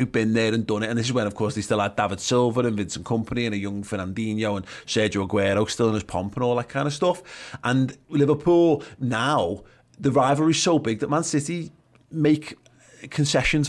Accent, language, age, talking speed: British, English, 30-49, 220 wpm